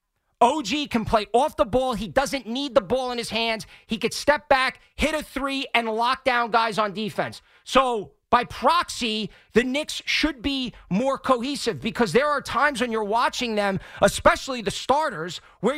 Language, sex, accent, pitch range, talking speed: English, male, American, 180-250 Hz, 185 wpm